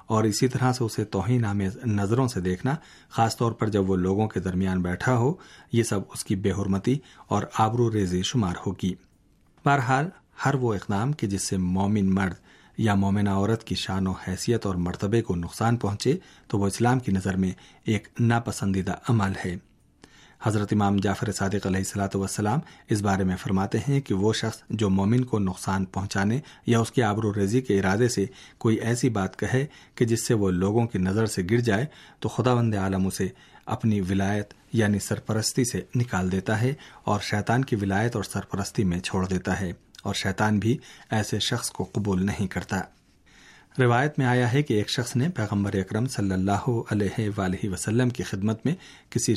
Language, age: Urdu, 40-59